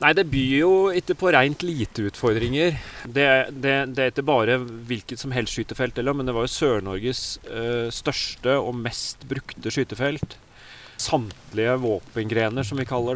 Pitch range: 110-135 Hz